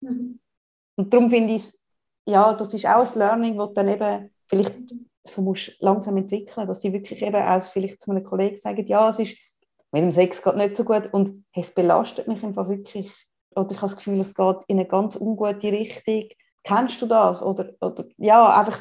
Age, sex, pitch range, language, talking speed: 30-49, female, 185-225 Hz, German, 205 wpm